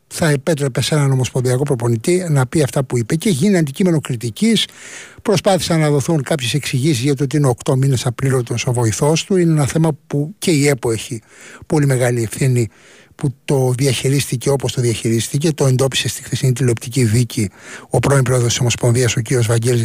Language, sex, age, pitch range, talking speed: Greek, male, 60-79, 125-160 Hz, 185 wpm